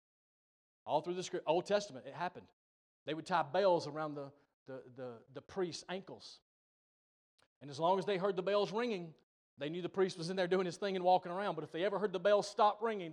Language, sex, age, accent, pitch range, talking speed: English, male, 30-49, American, 155-235 Hz, 230 wpm